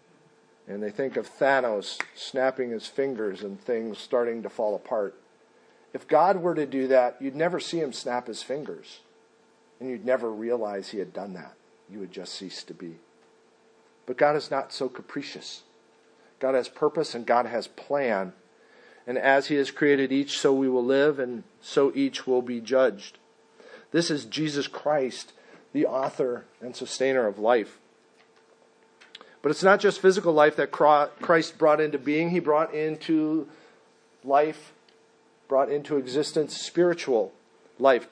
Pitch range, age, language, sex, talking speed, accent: 130-170 Hz, 50-69, English, male, 155 wpm, American